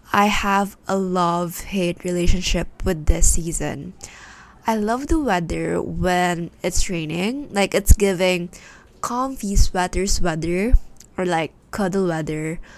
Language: Filipino